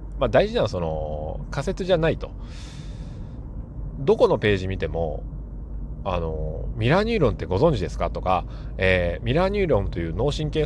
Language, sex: Japanese, male